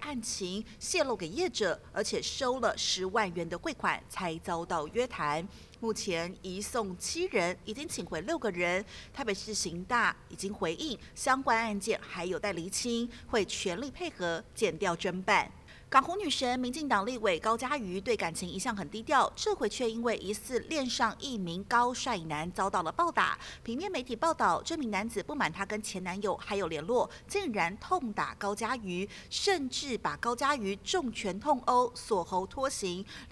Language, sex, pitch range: Chinese, female, 190-255 Hz